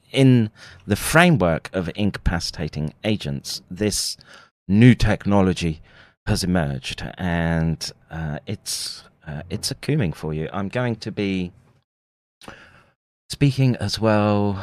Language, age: English, 30-49